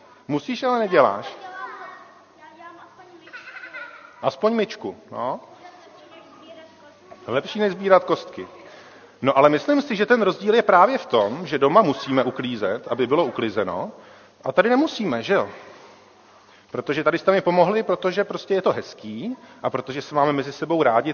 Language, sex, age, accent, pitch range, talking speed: Czech, male, 40-59, native, 130-215 Hz, 150 wpm